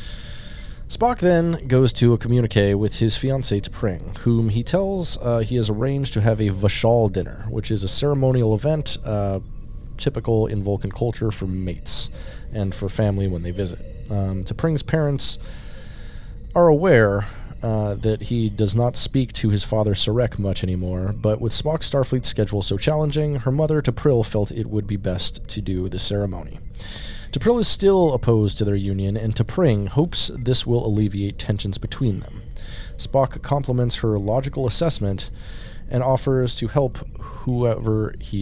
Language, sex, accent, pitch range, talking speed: English, male, American, 100-130 Hz, 160 wpm